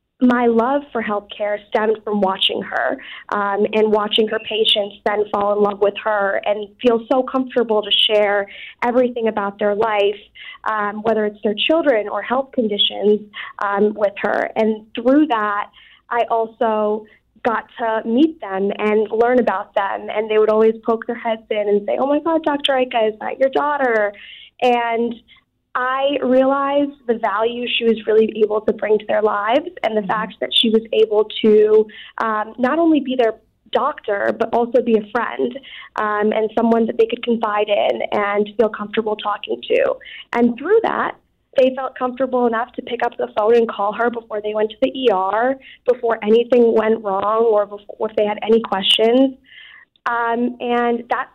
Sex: female